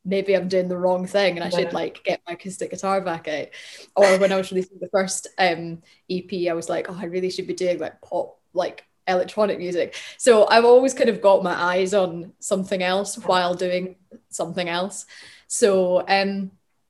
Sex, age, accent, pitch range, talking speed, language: female, 20-39, British, 175-195 Hz, 200 wpm, English